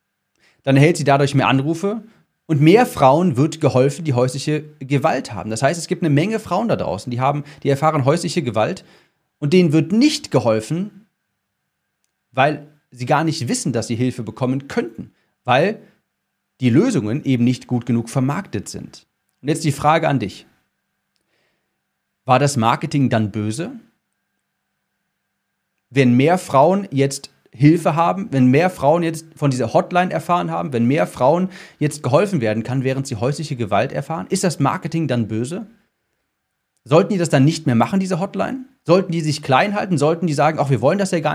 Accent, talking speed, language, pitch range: German, 175 wpm, German, 125-175 Hz